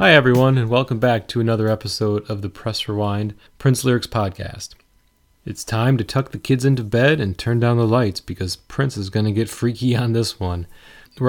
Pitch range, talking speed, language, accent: 100-120 Hz, 205 wpm, English, American